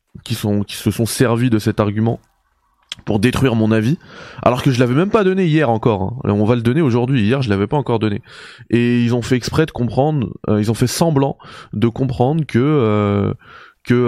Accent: French